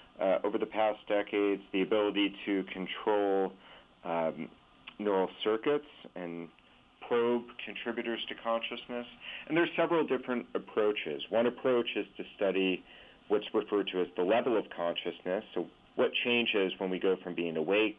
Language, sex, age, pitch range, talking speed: English, male, 40-59, 85-110 Hz, 150 wpm